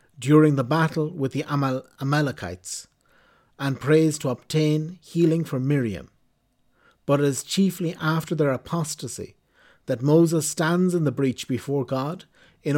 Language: English